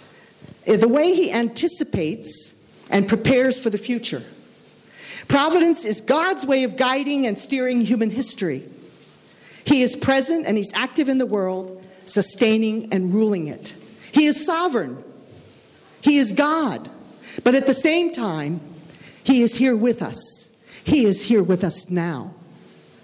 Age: 50-69